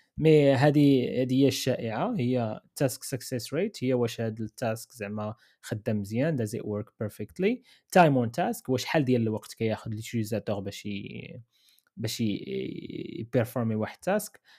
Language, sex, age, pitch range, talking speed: Arabic, male, 20-39, 115-160 Hz, 150 wpm